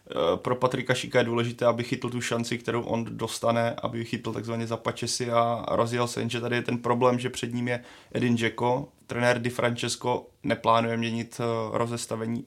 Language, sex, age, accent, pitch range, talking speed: Czech, male, 20-39, native, 115-125 Hz, 180 wpm